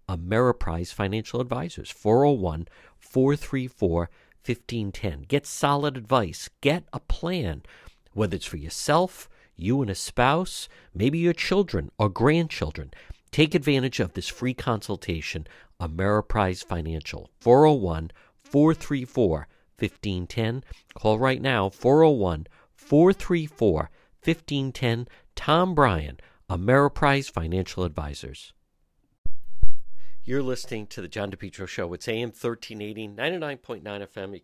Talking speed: 105 wpm